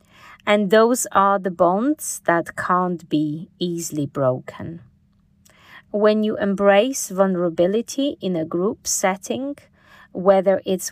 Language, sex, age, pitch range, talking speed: English, female, 30-49, 175-215 Hz, 110 wpm